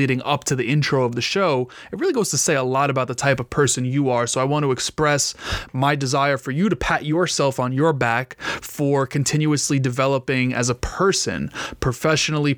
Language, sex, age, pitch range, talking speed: English, male, 20-39, 135-160 Hz, 210 wpm